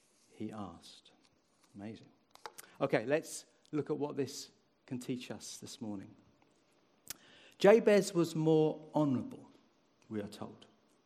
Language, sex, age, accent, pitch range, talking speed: English, male, 50-69, British, 125-155 Hz, 115 wpm